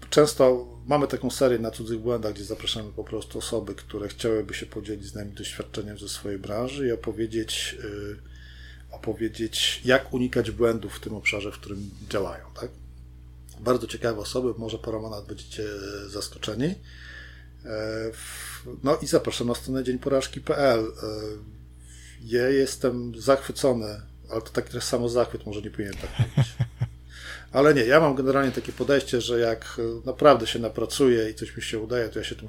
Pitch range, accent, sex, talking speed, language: 105-125 Hz, native, male, 155 wpm, Polish